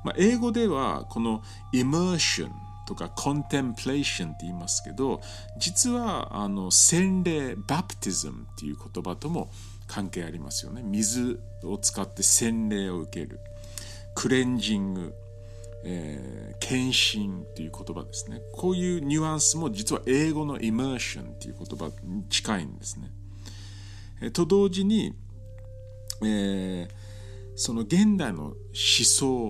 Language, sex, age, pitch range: Japanese, male, 50-69, 100-125 Hz